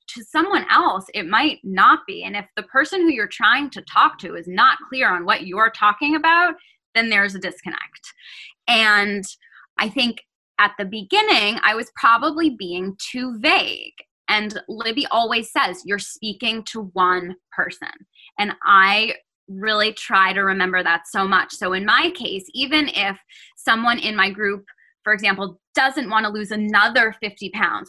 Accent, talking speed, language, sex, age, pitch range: American, 170 wpm, English, female, 10-29, 195-265 Hz